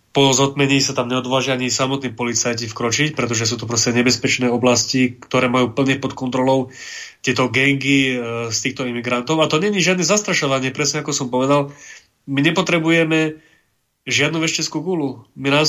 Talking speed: 160 wpm